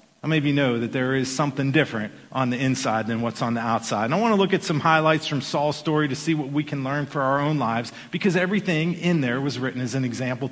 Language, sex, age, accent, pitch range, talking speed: English, male, 40-59, American, 130-170 Hz, 260 wpm